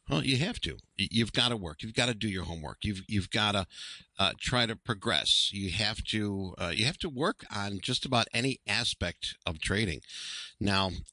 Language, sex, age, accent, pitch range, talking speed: English, male, 50-69, American, 90-125 Hz, 205 wpm